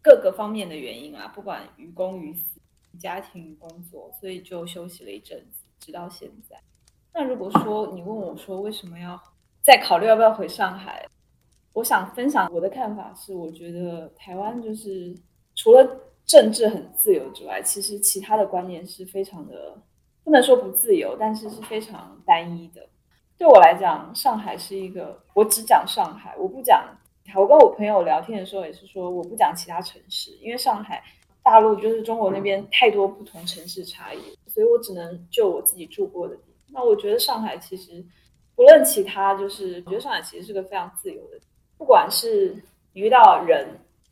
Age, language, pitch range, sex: 20-39, Chinese, 180-280 Hz, female